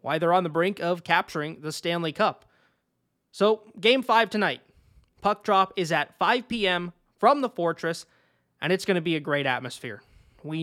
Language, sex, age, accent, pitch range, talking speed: English, male, 20-39, American, 155-210 Hz, 180 wpm